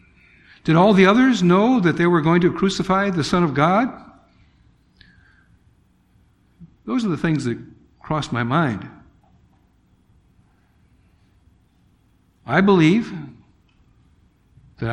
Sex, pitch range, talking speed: male, 130-195 Hz, 105 wpm